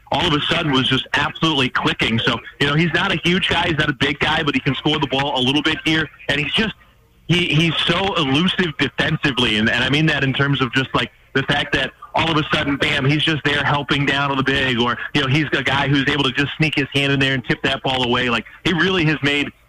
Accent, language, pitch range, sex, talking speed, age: American, English, 125-150 Hz, male, 275 wpm, 30-49